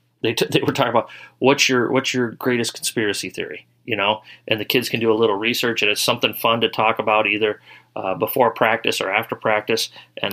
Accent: American